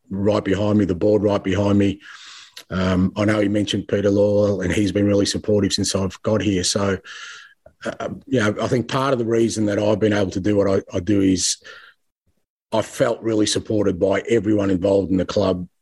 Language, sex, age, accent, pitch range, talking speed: English, male, 30-49, Australian, 95-105 Hz, 210 wpm